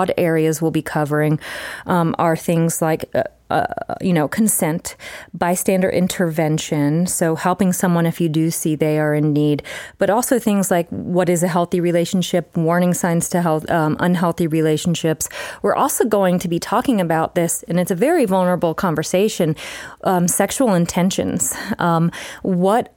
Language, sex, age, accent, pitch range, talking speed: English, female, 30-49, American, 165-195 Hz, 155 wpm